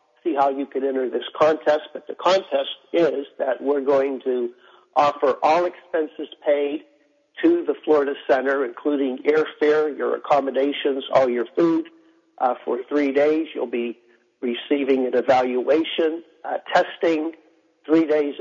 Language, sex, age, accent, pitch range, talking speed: English, male, 60-79, American, 135-165 Hz, 140 wpm